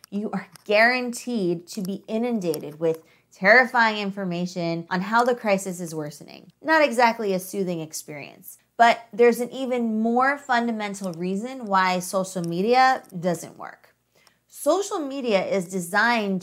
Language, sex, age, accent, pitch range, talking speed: English, female, 30-49, American, 170-230 Hz, 130 wpm